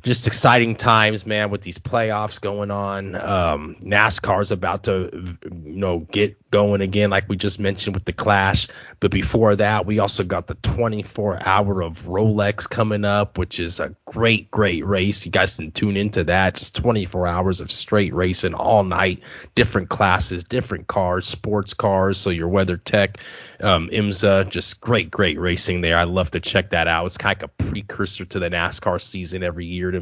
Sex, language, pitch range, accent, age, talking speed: male, English, 90-105 Hz, American, 30-49, 185 wpm